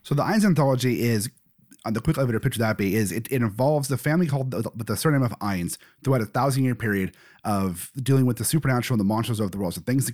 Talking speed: 265 wpm